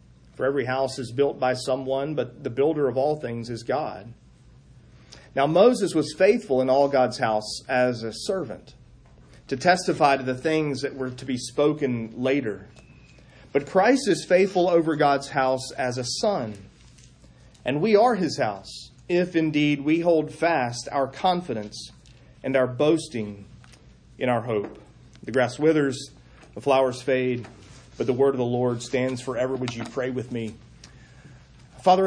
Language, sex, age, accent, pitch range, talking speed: English, male, 40-59, American, 125-155 Hz, 160 wpm